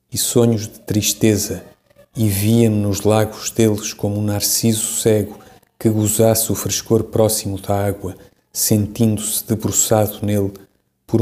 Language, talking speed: Portuguese, 130 wpm